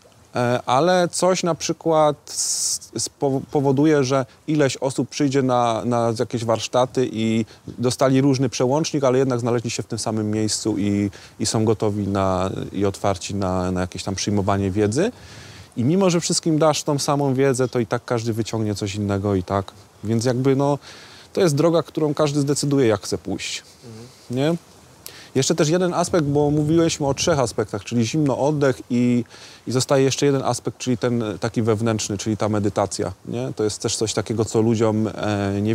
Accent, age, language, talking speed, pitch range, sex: native, 30-49, Polish, 170 wpm, 105-135 Hz, male